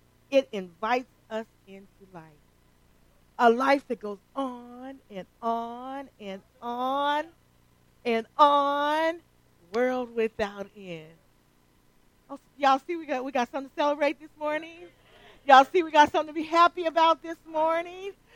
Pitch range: 205-290 Hz